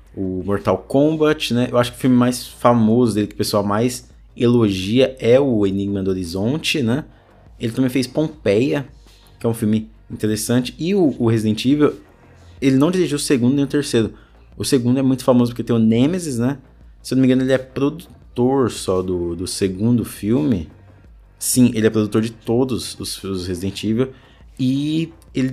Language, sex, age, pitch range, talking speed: Portuguese, male, 20-39, 105-125 Hz, 190 wpm